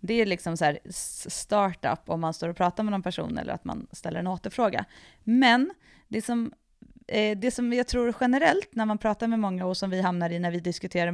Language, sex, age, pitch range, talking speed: Swedish, female, 30-49, 170-215 Hz, 225 wpm